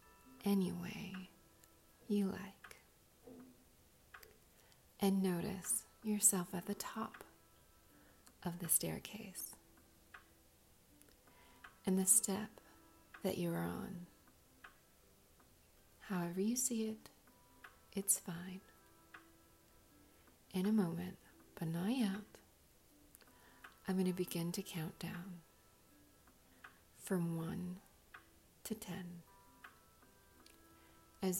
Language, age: English, 40-59